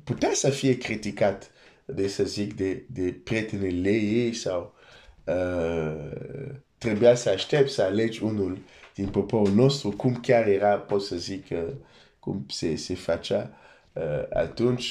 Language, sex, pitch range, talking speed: Romanian, male, 100-125 Hz, 135 wpm